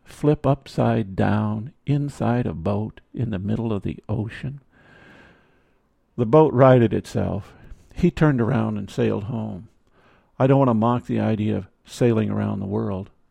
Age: 50-69